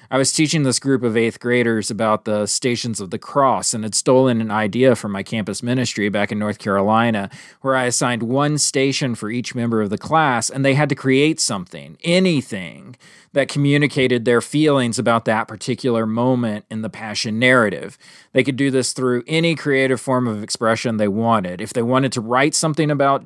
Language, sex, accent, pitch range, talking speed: English, male, American, 120-145 Hz, 195 wpm